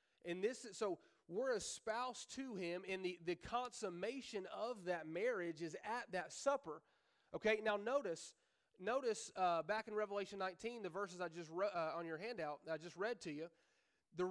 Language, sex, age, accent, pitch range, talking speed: English, male, 30-49, American, 170-215 Hz, 185 wpm